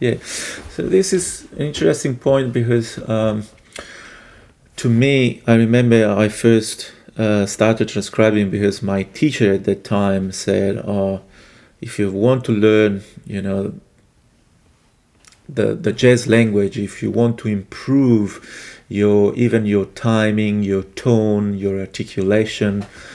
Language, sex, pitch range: English, male, 100-120 Hz